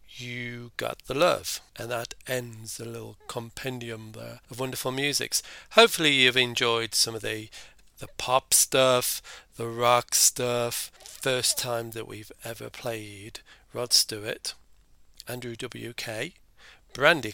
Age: 40-59